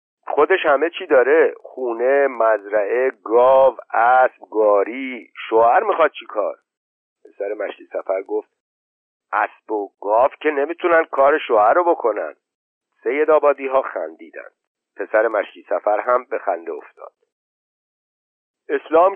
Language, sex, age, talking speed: Persian, male, 50-69, 115 wpm